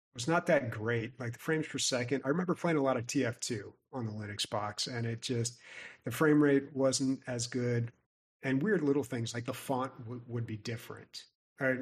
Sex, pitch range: male, 115-130 Hz